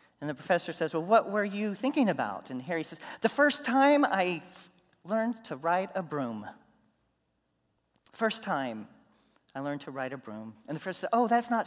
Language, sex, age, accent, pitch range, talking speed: English, male, 40-59, American, 140-205 Hz, 195 wpm